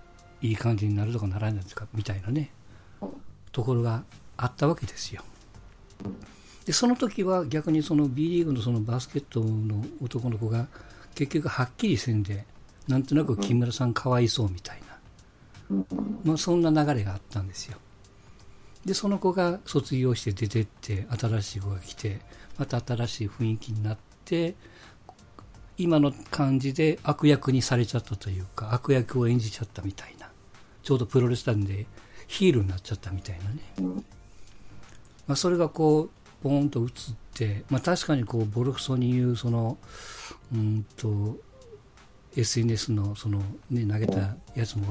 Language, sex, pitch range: Japanese, male, 105-145 Hz